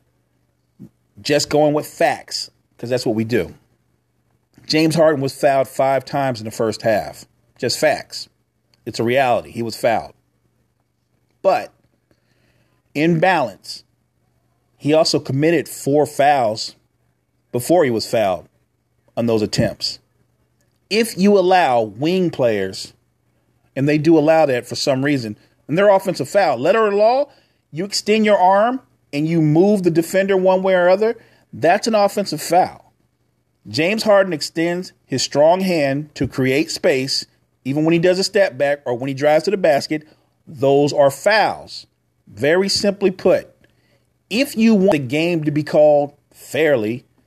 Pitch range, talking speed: 130-180 Hz, 150 wpm